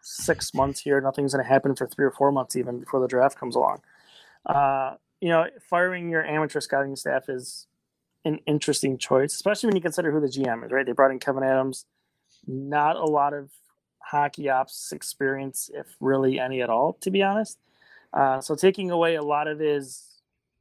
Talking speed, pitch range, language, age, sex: 195 wpm, 135-150 Hz, English, 20-39, male